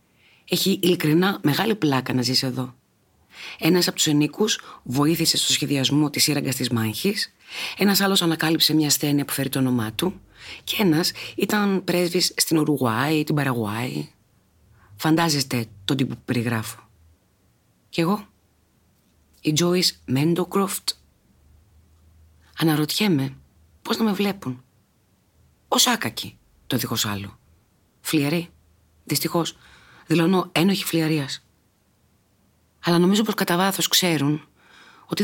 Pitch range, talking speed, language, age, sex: 110-170 Hz, 110 wpm, Greek, 40-59, female